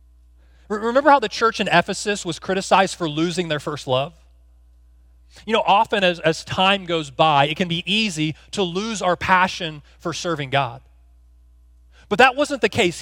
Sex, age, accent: male, 30-49, American